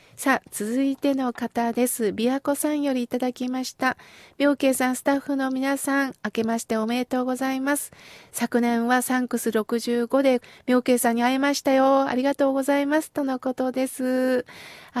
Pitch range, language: 225-275 Hz, Japanese